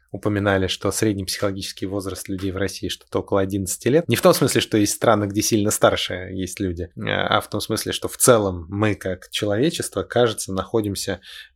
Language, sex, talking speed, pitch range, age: Russian, male, 185 wpm, 95-105 Hz, 20-39